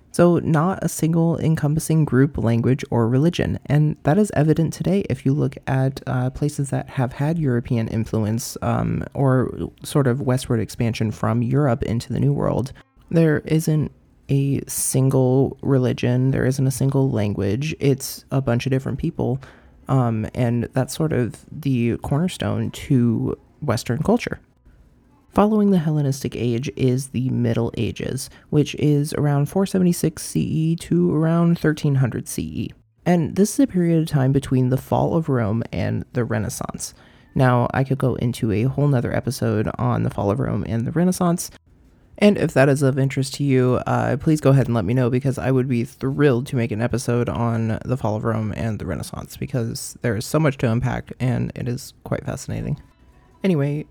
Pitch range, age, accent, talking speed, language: 120-145 Hz, 30-49, American, 175 wpm, English